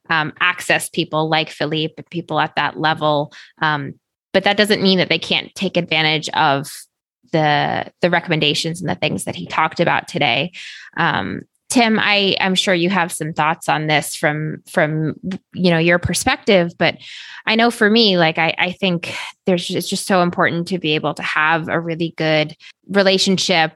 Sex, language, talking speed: female, English, 180 wpm